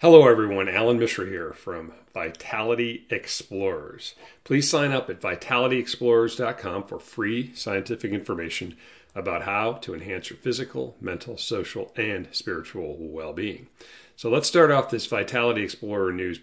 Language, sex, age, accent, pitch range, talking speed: English, male, 40-59, American, 95-120 Hz, 130 wpm